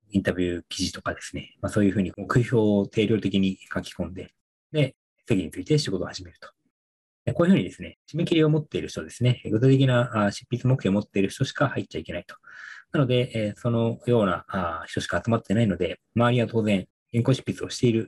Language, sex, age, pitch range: Japanese, male, 20-39, 95-130 Hz